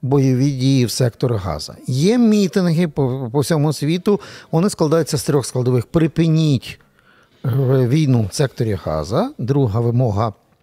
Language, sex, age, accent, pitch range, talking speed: Ukrainian, male, 50-69, native, 125-165 Hz, 130 wpm